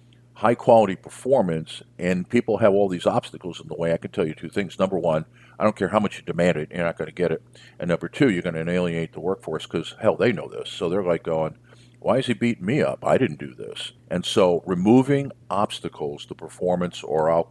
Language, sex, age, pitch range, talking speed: English, male, 50-69, 90-120 Hz, 235 wpm